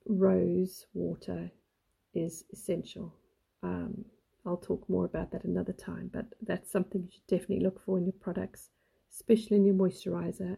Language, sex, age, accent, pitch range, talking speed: English, female, 40-59, British, 185-200 Hz, 155 wpm